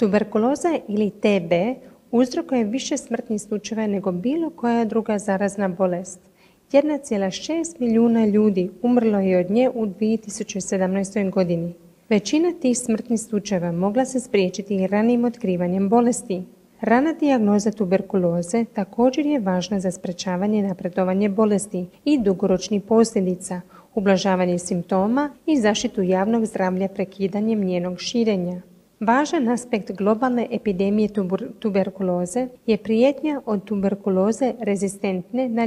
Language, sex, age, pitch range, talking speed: Croatian, female, 40-59, 190-240 Hz, 115 wpm